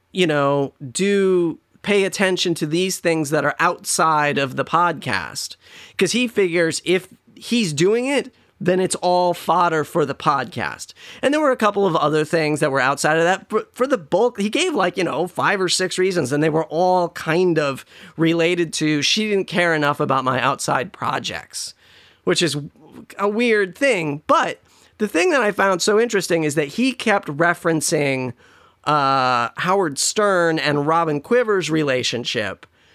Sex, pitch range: male, 150-190 Hz